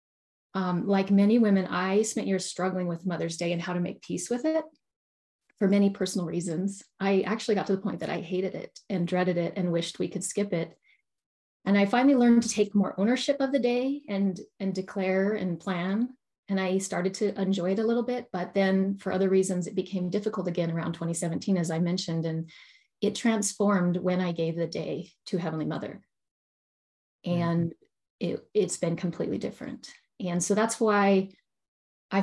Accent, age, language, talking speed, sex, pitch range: American, 30-49, English, 190 wpm, female, 180-215 Hz